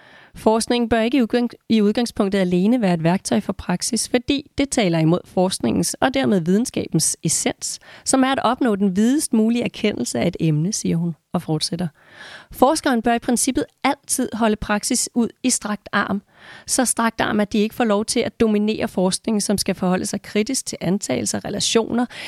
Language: Danish